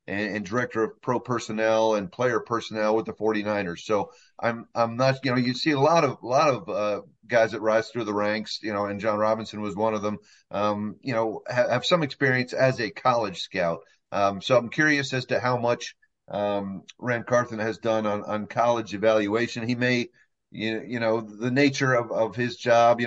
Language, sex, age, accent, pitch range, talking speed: English, male, 40-59, American, 110-125 Hz, 210 wpm